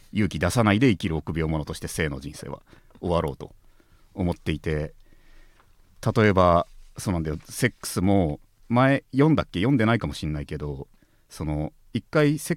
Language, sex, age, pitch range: Japanese, male, 40-59, 80-110 Hz